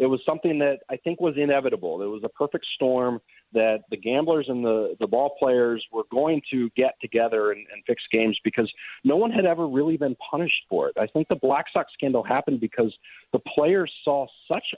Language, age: English, 40-59